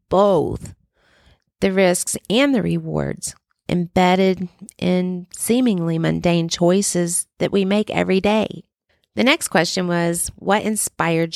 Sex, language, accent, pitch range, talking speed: female, English, American, 150-180 Hz, 115 wpm